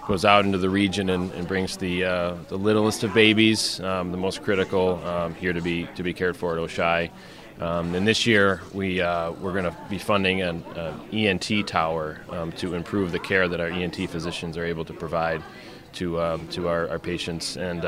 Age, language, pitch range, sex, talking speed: 30-49, English, 85-100 Hz, male, 210 wpm